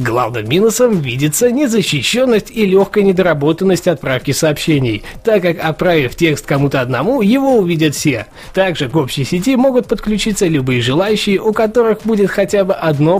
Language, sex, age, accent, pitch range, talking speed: Russian, male, 20-39, native, 140-205 Hz, 145 wpm